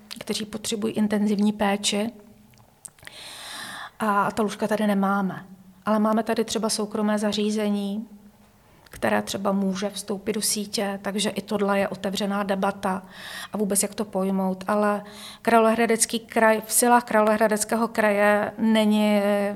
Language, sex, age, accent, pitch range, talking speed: Czech, female, 40-59, native, 205-215 Hz, 120 wpm